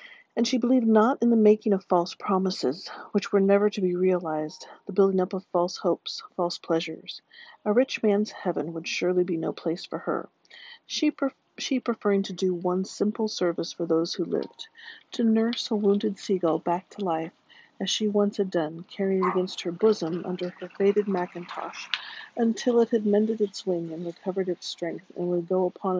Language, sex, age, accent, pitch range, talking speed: English, female, 50-69, American, 180-220 Hz, 190 wpm